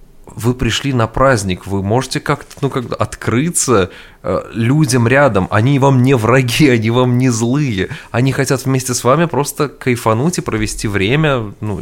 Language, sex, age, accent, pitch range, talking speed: Russian, male, 20-39, native, 100-125 Hz, 155 wpm